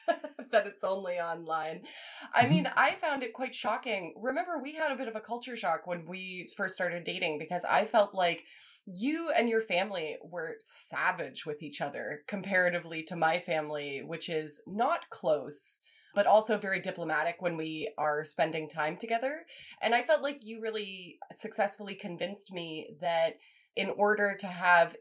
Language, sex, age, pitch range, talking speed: English, female, 20-39, 160-220 Hz, 170 wpm